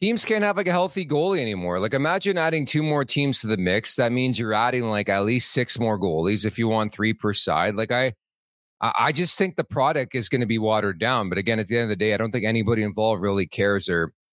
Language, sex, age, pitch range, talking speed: English, male, 30-49, 100-130 Hz, 260 wpm